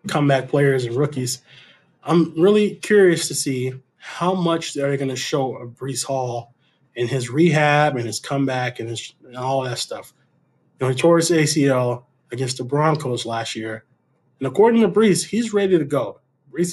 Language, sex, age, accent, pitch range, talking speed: English, male, 20-39, American, 125-155 Hz, 180 wpm